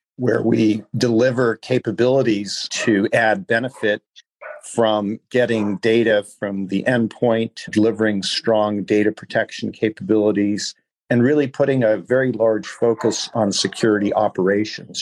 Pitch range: 105-115 Hz